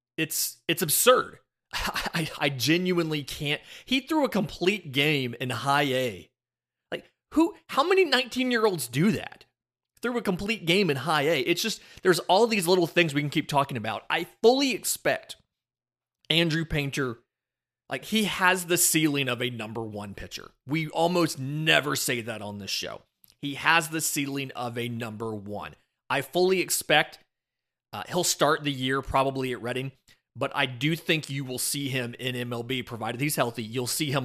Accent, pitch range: American, 125-170 Hz